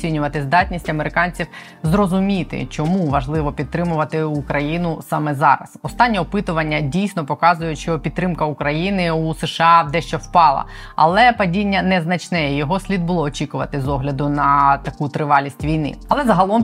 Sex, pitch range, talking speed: female, 155-185 Hz, 135 wpm